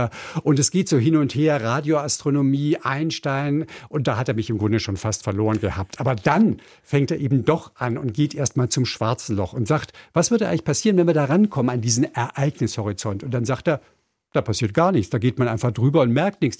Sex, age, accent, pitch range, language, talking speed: male, 60-79, German, 120-160 Hz, German, 225 wpm